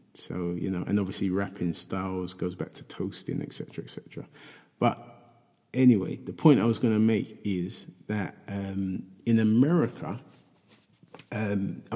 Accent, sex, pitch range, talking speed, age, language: British, male, 95-110 Hz, 150 wpm, 20-39, English